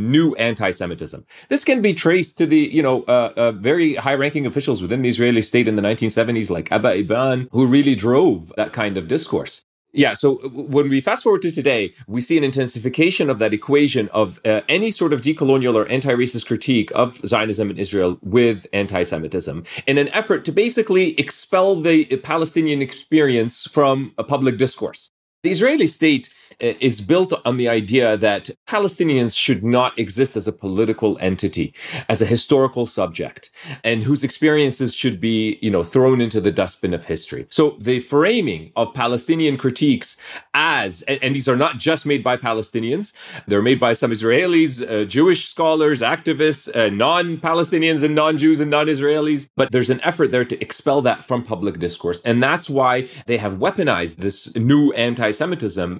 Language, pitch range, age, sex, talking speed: English, 110-150 Hz, 30-49, male, 170 wpm